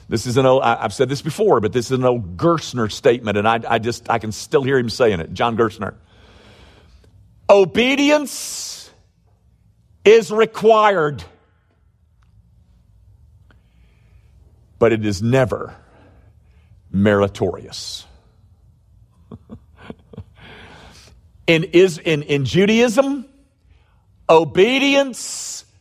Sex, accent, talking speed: male, American, 100 wpm